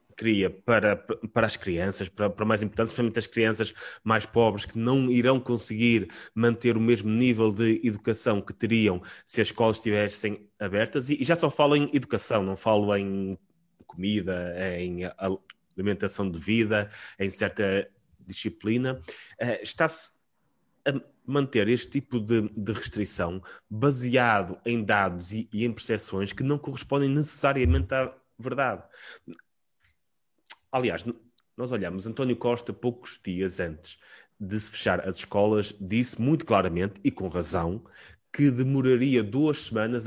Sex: male